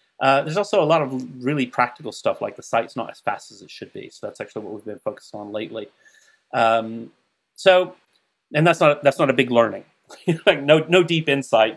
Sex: male